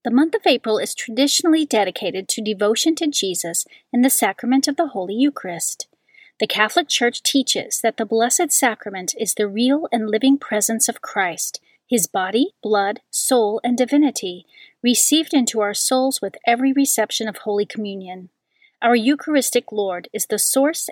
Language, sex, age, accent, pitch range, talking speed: English, female, 40-59, American, 205-275 Hz, 160 wpm